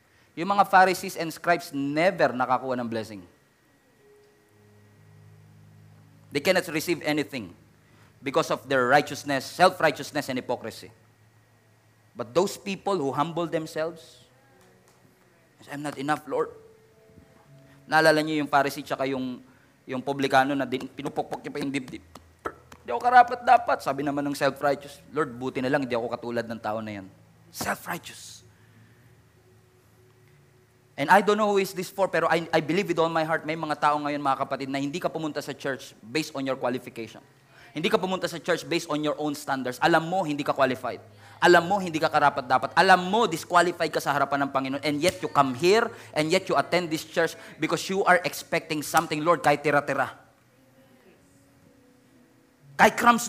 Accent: Filipino